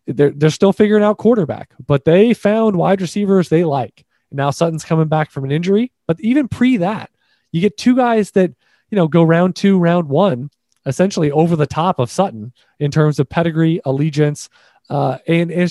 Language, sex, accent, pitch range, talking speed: English, male, American, 160-210 Hz, 190 wpm